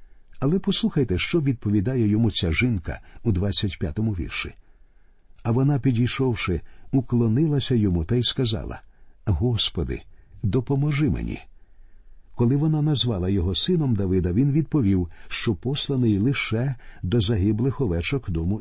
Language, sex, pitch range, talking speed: Ukrainian, male, 95-130 Hz, 120 wpm